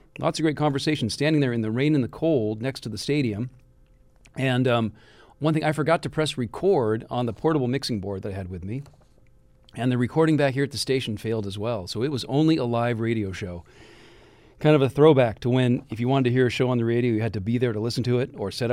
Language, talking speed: English, 260 wpm